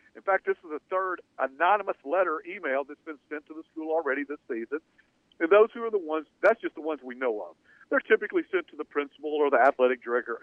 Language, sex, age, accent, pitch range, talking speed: English, male, 50-69, American, 145-200 Hz, 235 wpm